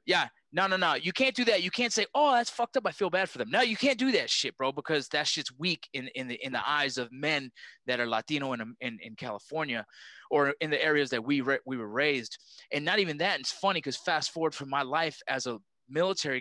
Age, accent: 20-39, American